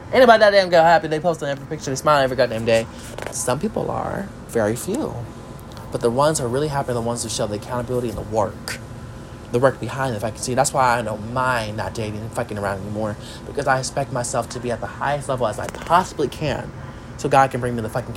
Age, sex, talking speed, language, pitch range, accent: 20-39, male, 245 wpm, English, 115-150 Hz, American